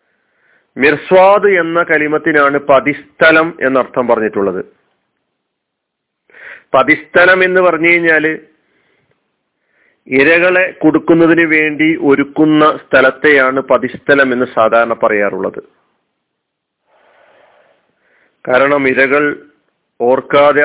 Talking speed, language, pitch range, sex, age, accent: 65 wpm, Malayalam, 140-175 Hz, male, 40-59, native